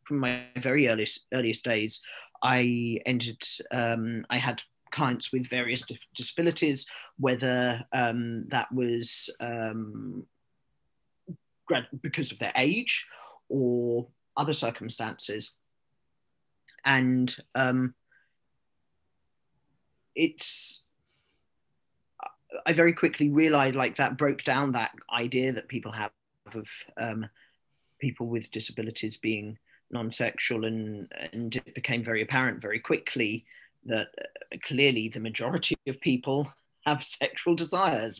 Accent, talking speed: British, 105 wpm